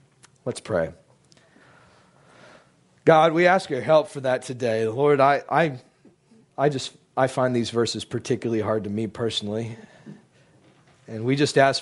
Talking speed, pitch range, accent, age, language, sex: 140 wpm, 105-130 Hz, American, 40-59, English, male